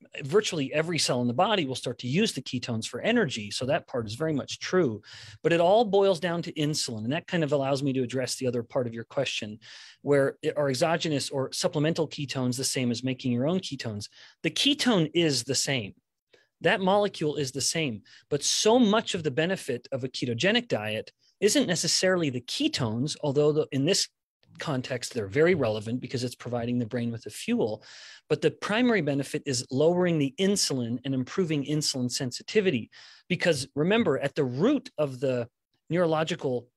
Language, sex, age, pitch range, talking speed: English, male, 30-49, 130-170 Hz, 185 wpm